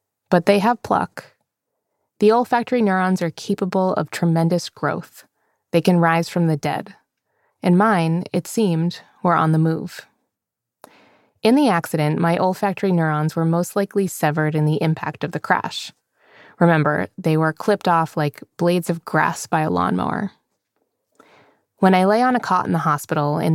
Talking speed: 165 wpm